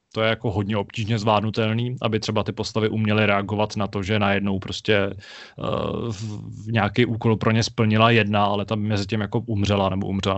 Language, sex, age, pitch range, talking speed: Czech, male, 20-39, 105-115 Hz, 195 wpm